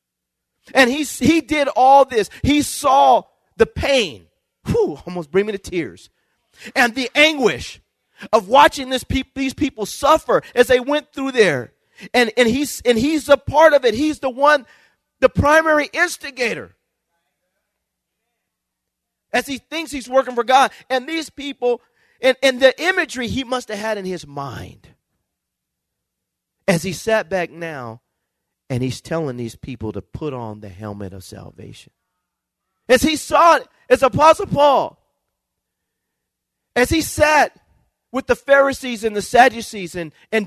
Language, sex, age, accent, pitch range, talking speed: English, male, 40-59, American, 205-290 Hz, 150 wpm